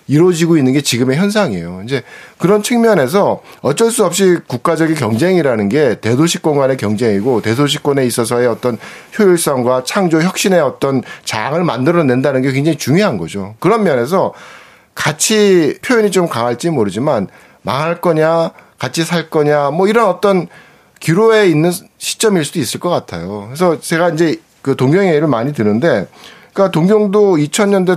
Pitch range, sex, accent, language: 125-180 Hz, male, native, Korean